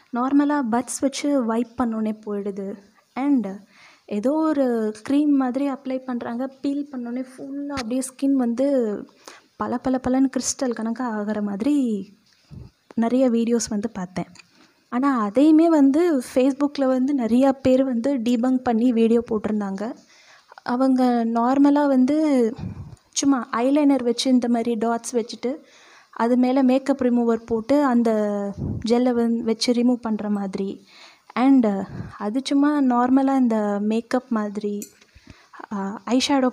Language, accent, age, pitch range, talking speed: Tamil, native, 20-39, 225-265 Hz, 120 wpm